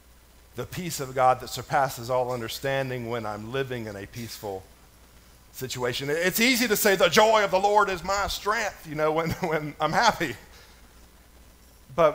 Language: English